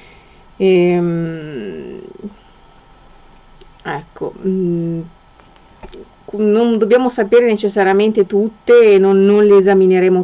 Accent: native